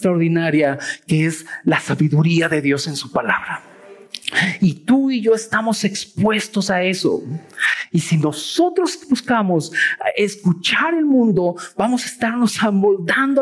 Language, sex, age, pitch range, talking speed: Spanish, male, 50-69, 155-230 Hz, 130 wpm